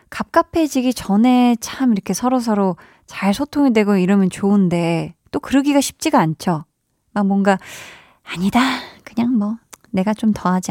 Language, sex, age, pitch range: Korean, female, 20-39, 185-245 Hz